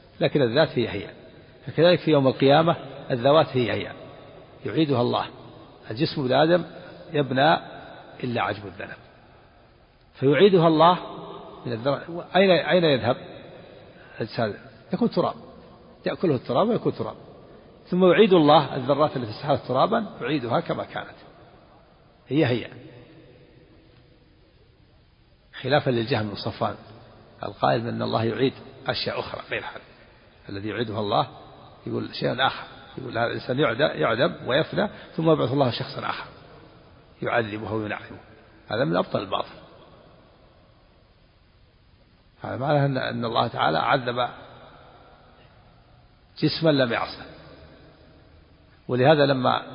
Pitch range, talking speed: 115-155 Hz, 105 wpm